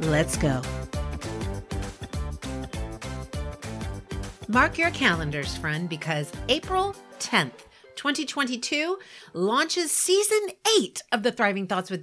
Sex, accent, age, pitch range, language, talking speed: female, American, 40-59, 165-260 Hz, English, 90 wpm